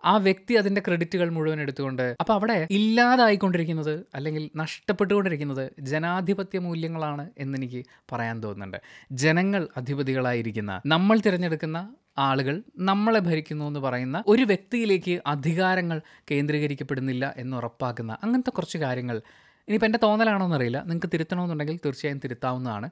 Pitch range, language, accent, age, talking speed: 130-185 Hz, Malayalam, native, 20-39, 115 wpm